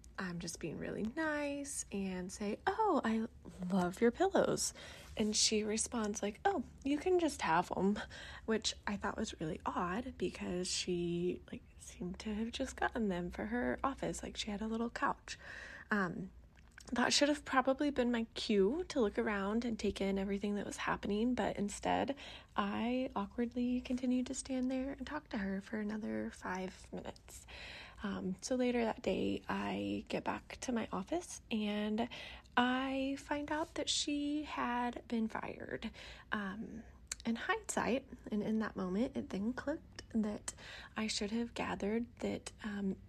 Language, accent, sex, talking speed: English, American, female, 165 wpm